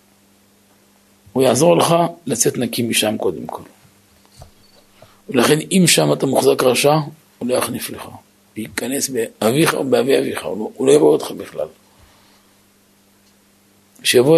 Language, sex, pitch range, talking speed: Hebrew, male, 100-165 Hz, 120 wpm